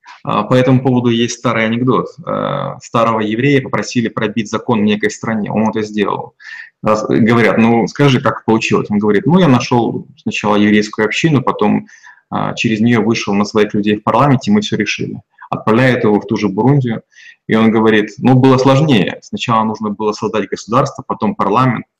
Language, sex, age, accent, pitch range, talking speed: Russian, male, 20-39, native, 110-130 Hz, 165 wpm